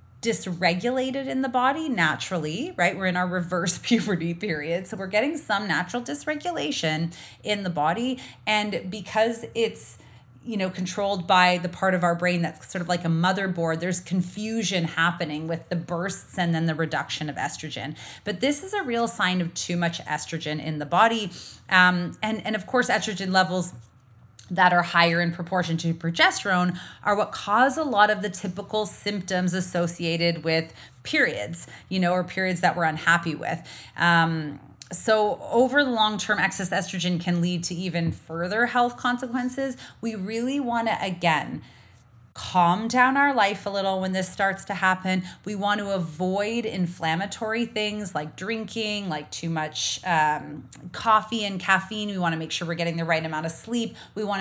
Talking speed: 175 wpm